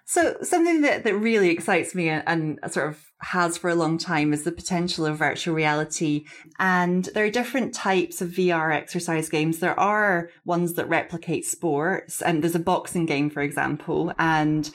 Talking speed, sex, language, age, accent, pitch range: 185 wpm, female, English, 20-39, British, 160-185 Hz